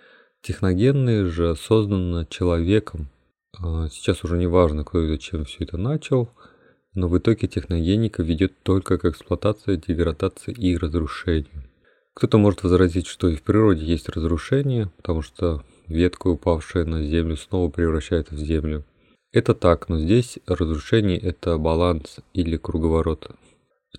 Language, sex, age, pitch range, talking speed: Russian, male, 30-49, 85-100 Hz, 140 wpm